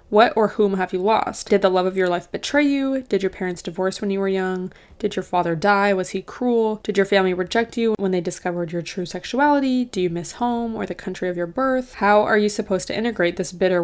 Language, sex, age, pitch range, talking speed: English, female, 20-39, 185-220 Hz, 250 wpm